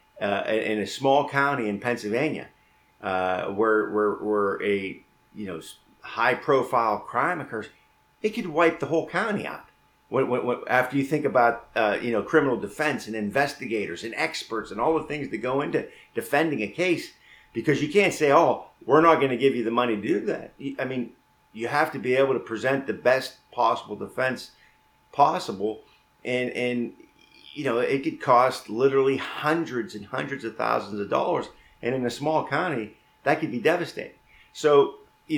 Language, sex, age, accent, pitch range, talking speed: English, male, 50-69, American, 110-140 Hz, 180 wpm